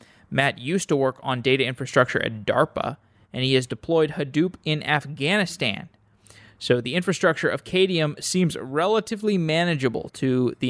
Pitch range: 125-150 Hz